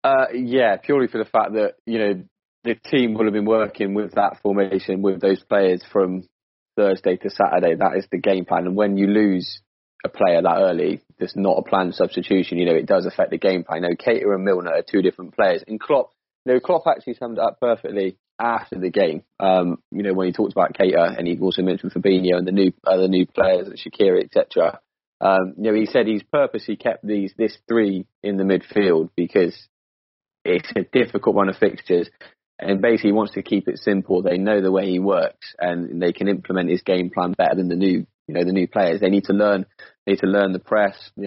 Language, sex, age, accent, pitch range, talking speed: English, male, 20-39, British, 95-105 Hz, 225 wpm